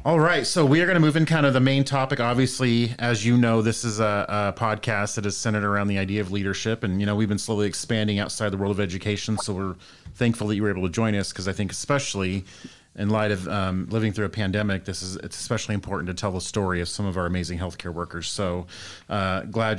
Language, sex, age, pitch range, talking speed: English, male, 30-49, 95-110 Hz, 255 wpm